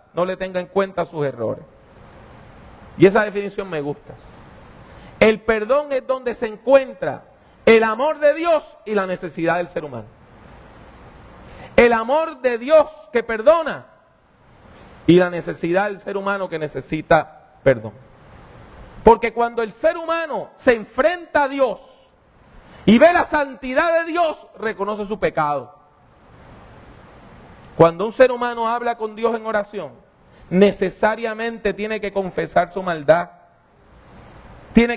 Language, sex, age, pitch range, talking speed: English, male, 40-59, 185-285 Hz, 130 wpm